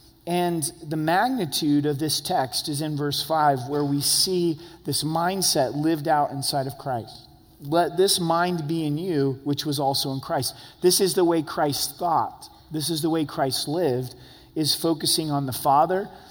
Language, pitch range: English, 135-170 Hz